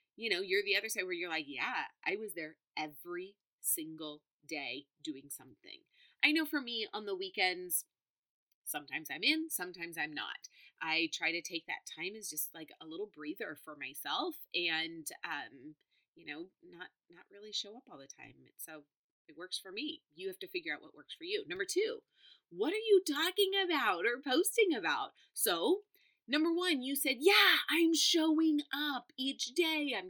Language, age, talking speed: English, 30-49, 185 wpm